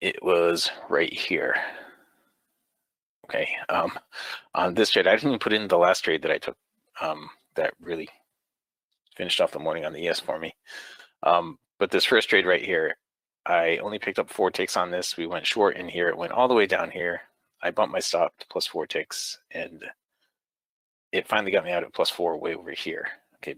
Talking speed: 205 wpm